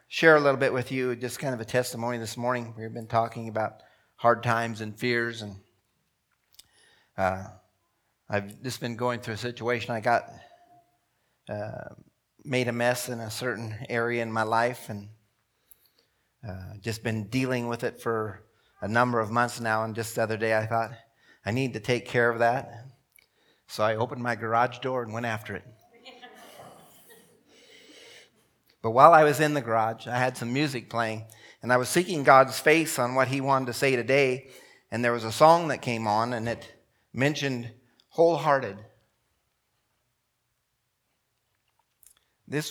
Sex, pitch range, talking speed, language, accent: male, 115-130 Hz, 165 wpm, English, American